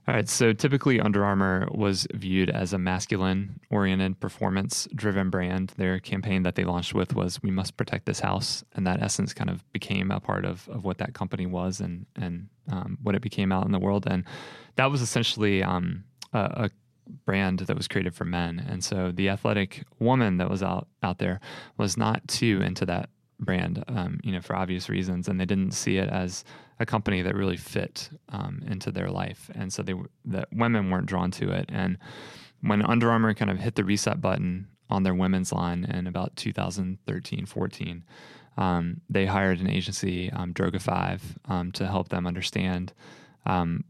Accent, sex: American, male